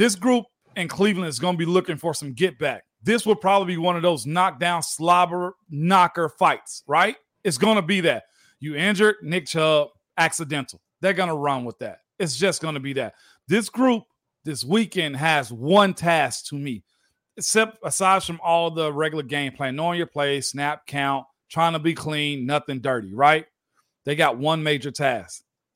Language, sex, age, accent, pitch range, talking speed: English, male, 40-59, American, 145-185 Hz, 190 wpm